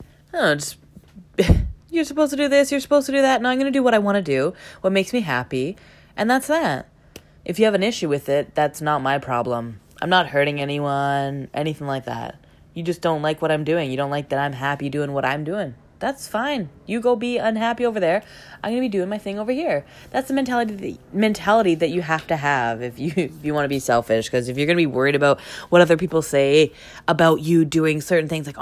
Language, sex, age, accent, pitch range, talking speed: English, female, 20-39, American, 145-225 Hz, 235 wpm